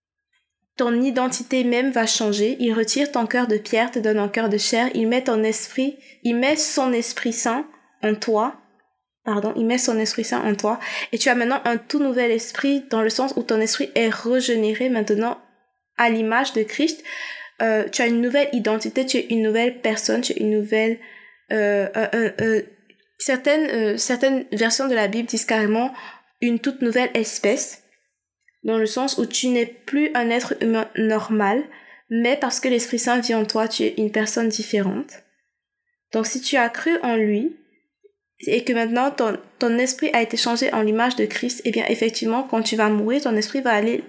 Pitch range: 220-260 Hz